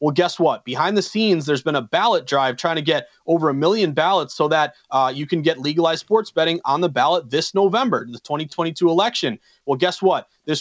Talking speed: 220 wpm